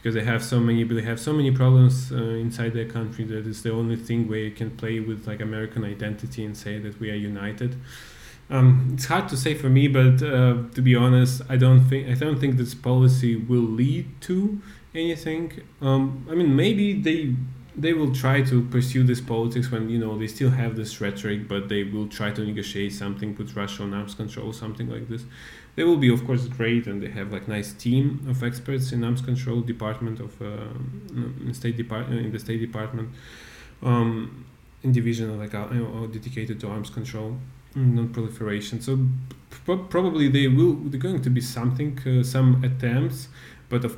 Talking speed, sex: 195 wpm, male